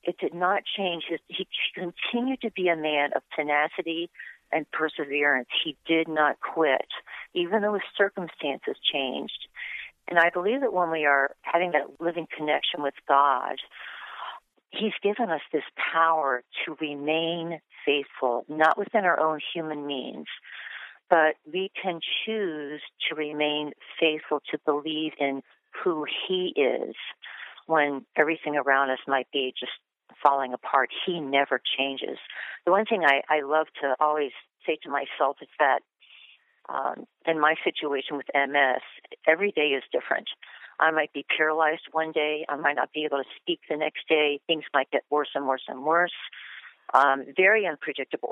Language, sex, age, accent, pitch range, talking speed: English, female, 50-69, American, 145-175 Hz, 155 wpm